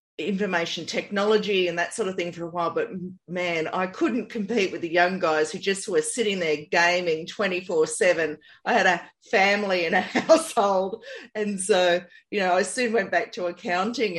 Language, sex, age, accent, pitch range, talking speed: English, female, 40-59, Australian, 160-205 Hz, 180 wpm